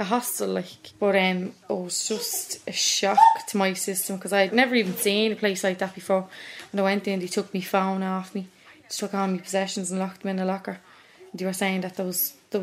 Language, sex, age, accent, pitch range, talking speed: English, female, 20-39, Irish, 195-230 Hz, 250 wpm